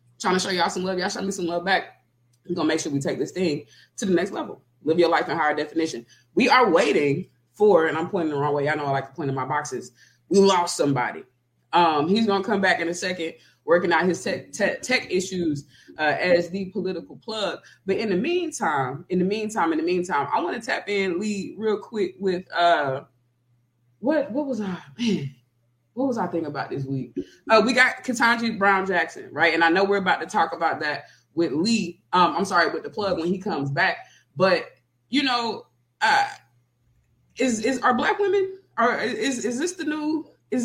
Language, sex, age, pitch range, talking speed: English, female, 20-39, 145-220 Hz, 220 wpm